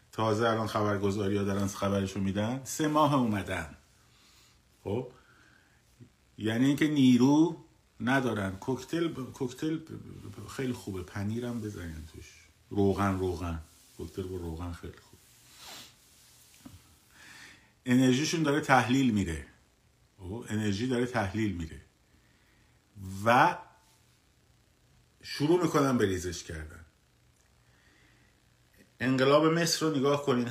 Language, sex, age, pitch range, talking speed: Persian, male, 50-69, 100-130 Hz, 90 wpm